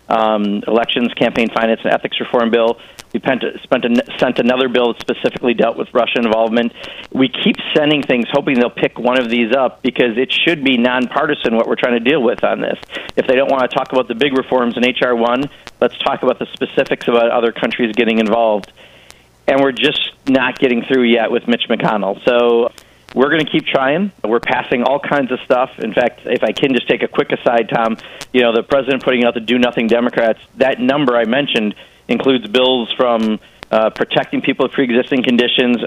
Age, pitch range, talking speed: 40-59, 115-130 Hz, 205 wpm